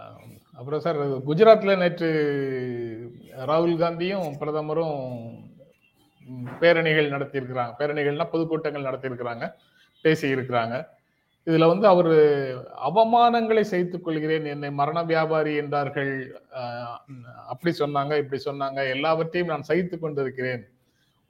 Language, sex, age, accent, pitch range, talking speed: Tamil, male, 30-49, native, 135-175 Hz, 90 wpm